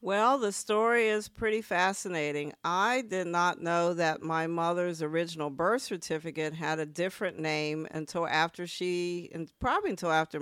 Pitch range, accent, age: 155-185 Hz, American, 50-69